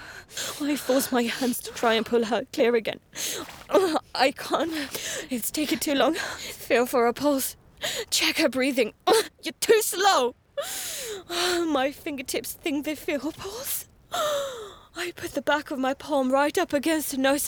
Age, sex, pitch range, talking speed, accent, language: 20-39, female, 280-380 Hz, 160 wpm, British, English